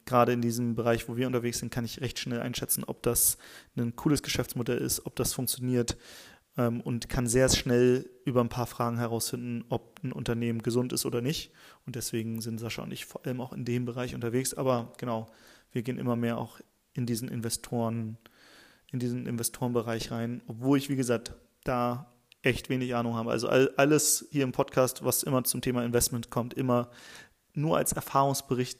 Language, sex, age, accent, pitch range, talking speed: German, male, 30-49, German, 120-135 Hz, 185 wpm